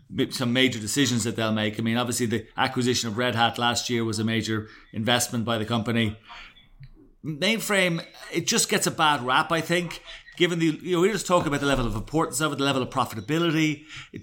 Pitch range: 130-170 Hz